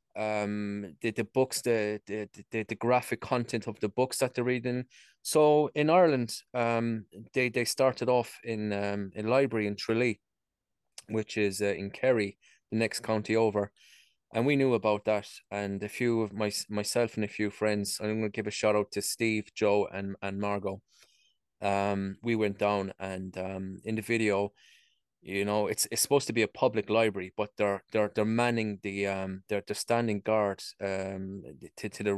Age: 20-39